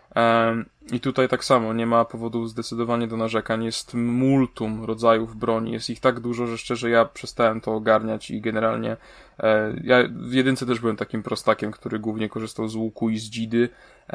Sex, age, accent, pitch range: male, 10-29, native, 110-120 Hz